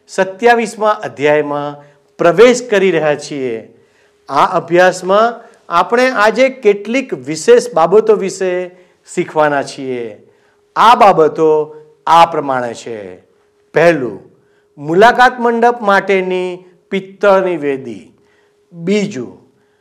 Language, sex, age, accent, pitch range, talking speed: Gujarati, male, 50-69, native, 155-240 Hz, 85 wpm